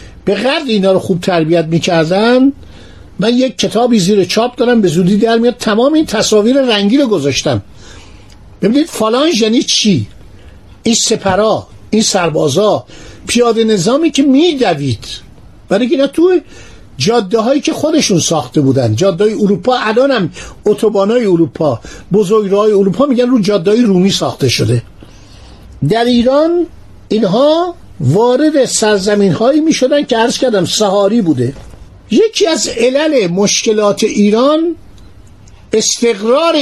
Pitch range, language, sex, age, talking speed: 170-255 Hz, Persian, male, 50-69, 125 wpm